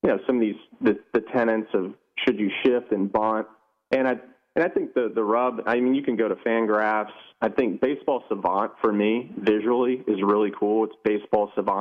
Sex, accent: male, American